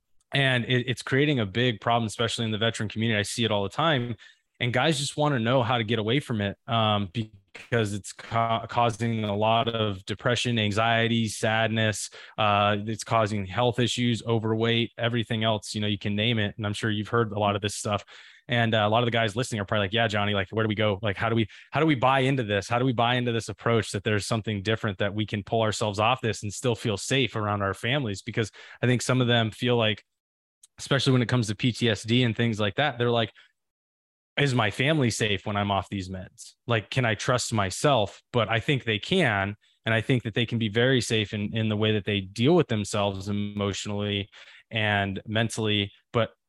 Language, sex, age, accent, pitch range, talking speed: English, male, 20-39, American, 105-120 Hz, 225 wpm